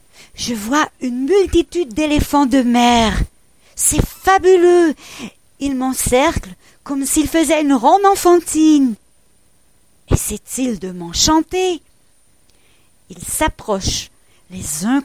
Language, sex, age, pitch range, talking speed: French, female, 40-59, 225-330 Hz, 100 wpm